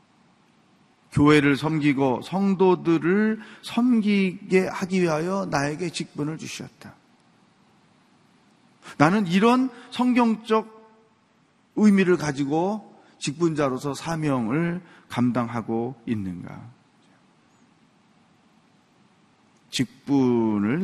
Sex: male